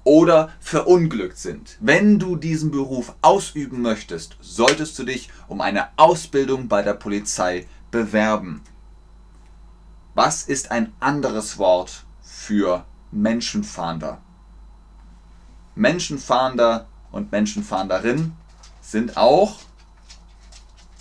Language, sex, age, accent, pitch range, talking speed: German, male, 30-49, German, 100-140 Hz, 90 wpm